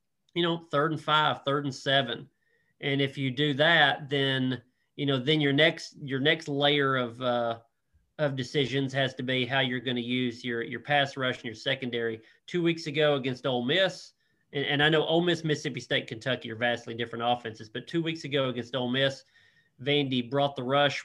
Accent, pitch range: American, 125-145 Hz